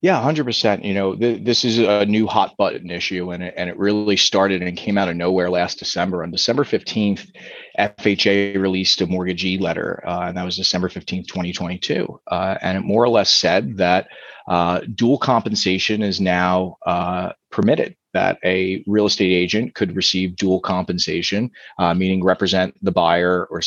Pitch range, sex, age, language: 90-105 Hz, male, 30-49, English